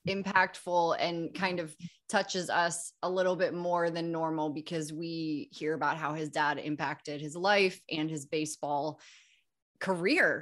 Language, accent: English, American